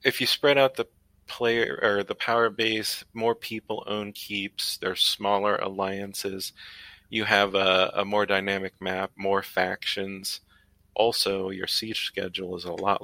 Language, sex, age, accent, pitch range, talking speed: English, male, 30-49, American, 95-115 Hz, 150 wpm